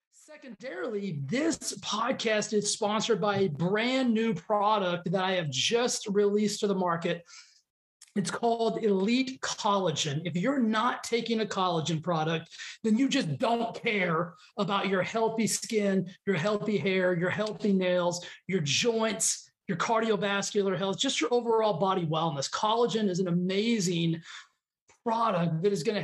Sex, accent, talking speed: male, American, 145 wpm